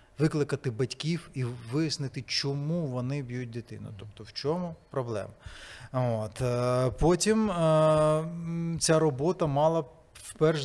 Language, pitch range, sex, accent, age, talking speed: Ukrainian, 130-160 Hz, male, native, 30-49, 95 wpm